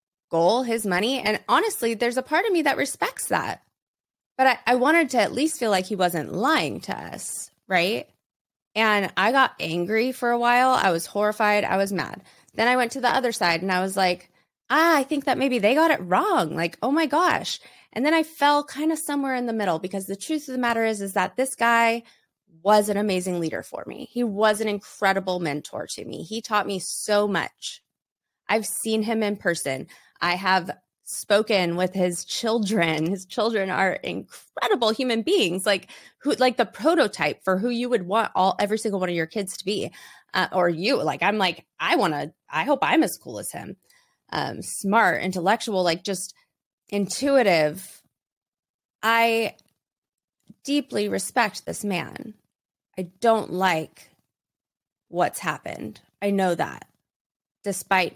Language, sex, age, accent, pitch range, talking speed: English, female, 20-39, American, 180-235 Hz, 180 wpm